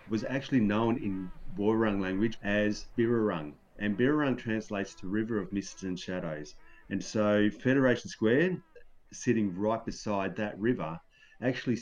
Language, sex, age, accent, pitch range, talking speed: English, male, 30-49, Australian, 100-125 Hz, 135 wpm